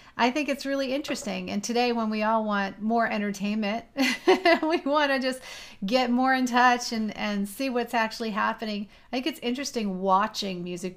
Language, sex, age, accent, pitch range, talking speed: English, female, 30-49, American, 200-245 Hz, 180 wpm